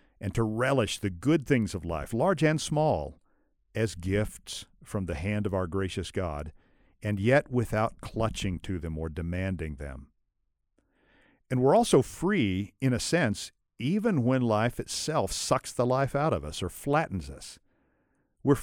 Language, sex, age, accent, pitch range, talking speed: English, male, 50-69, American, 90-125 Hz, 160 wpm